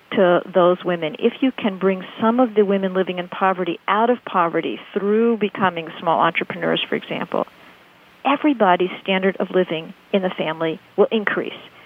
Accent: American